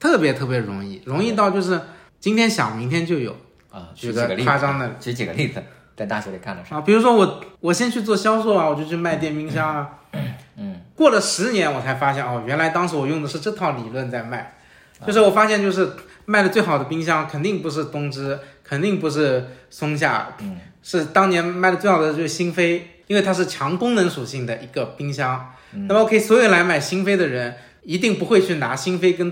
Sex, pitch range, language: male, 140-200 Hz, Chinese